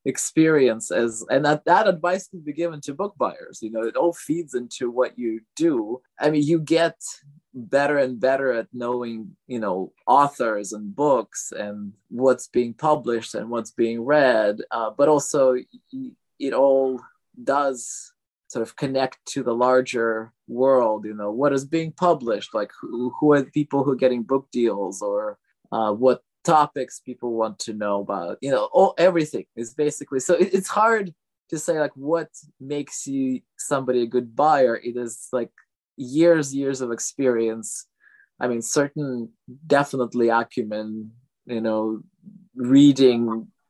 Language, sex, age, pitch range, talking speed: English, male, 20-39, 115-150 Hz, 160 wpm